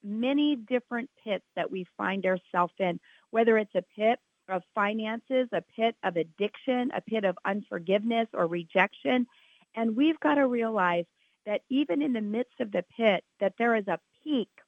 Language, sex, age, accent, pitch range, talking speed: English, female, 40-59, American, 190-250 Hz, 170 wpm